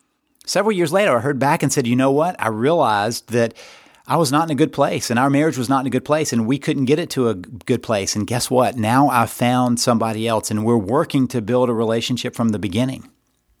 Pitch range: 120-150 Hz